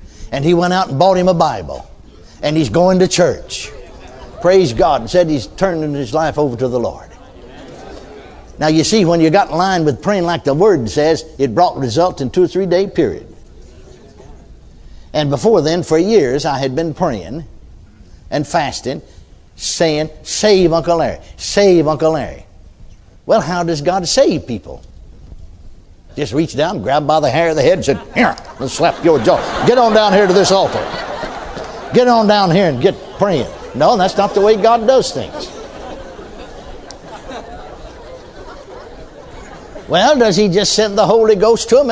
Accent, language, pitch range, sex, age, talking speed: American, English, 150-205 Hz, male, 60-79, 175 wpm